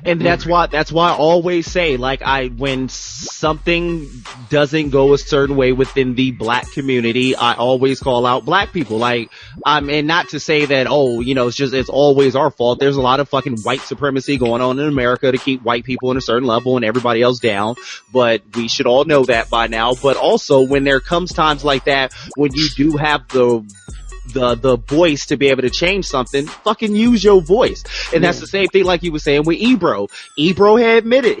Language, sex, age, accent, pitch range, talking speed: English, male, 20-39, American, 130-170 Hz, 220 wpm